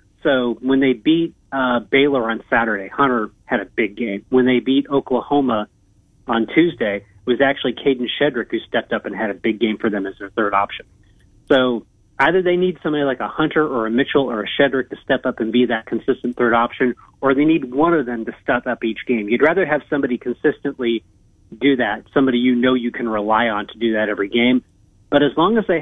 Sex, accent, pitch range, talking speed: male, American, 110-140 Hz, 225 wpm